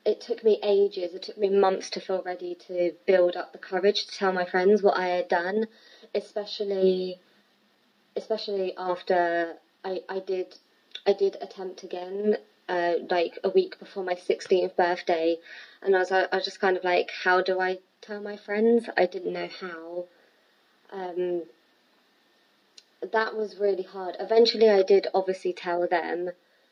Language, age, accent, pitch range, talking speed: English, 20-39, British, 175-200 Hz, 165 wpm